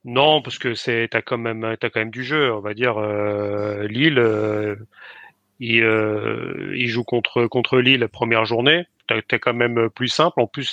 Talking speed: 200 wpm